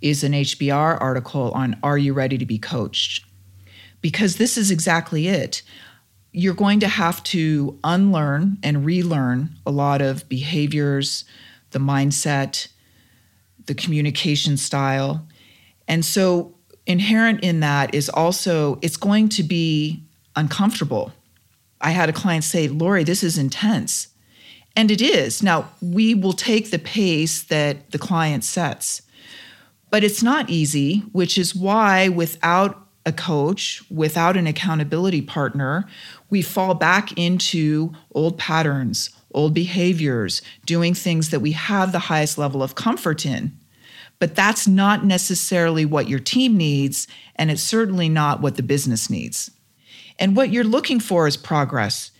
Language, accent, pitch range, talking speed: English, American, 140-185 Hz, 140 wpm